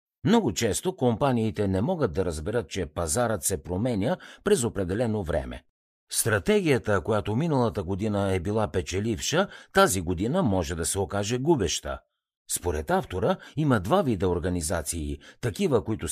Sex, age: male, 50-69